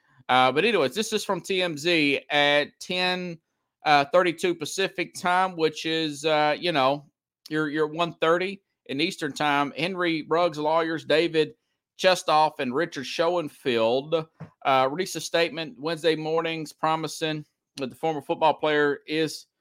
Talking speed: 135 wpm